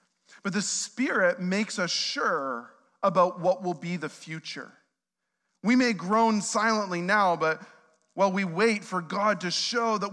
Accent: American